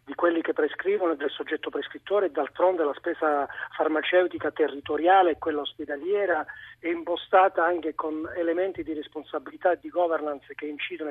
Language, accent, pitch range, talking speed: Italian, native, 155-185 Hz, 155 wpm